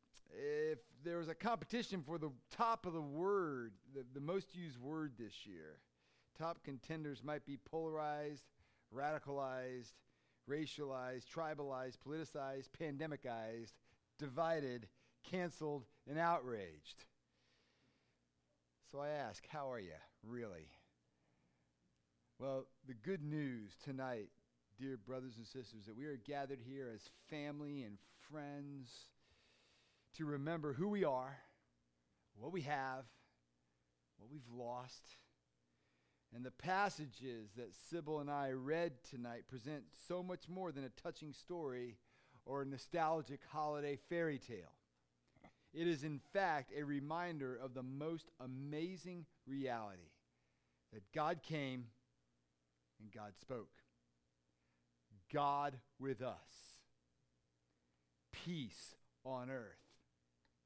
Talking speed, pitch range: 115 wpm, 100-150 Hz